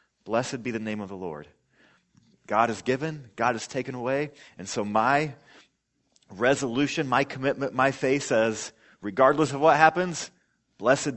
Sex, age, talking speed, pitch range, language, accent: male, 30-49, 150 wpm, 110-150 Hz, English, American